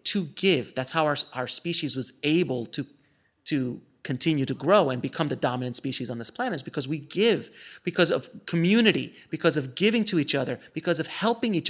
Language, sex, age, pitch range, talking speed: English, male, 30-49, 135-175 Hz, 200 wpm